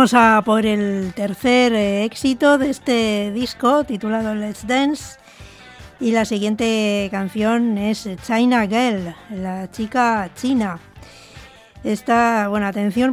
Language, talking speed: English, 115 wpm